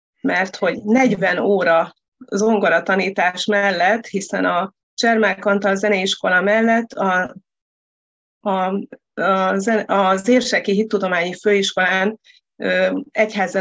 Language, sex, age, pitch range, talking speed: Hungarian, female, 30-49, 185-220 Hz, 95 wpm